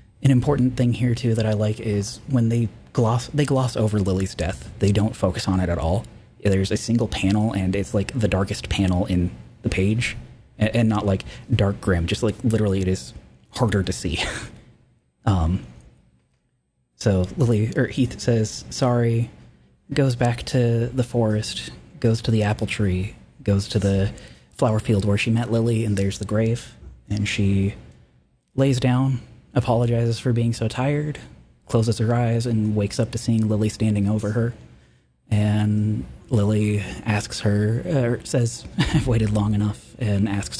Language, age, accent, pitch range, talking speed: English, 30-49, American, 95-120 Hz, 170 wpm